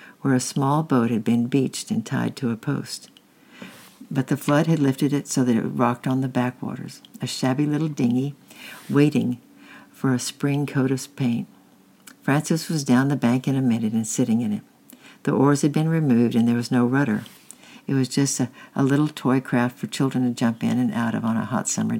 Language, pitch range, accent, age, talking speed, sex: English, 125-145 Hz, American, 60-79, 215 wpm, female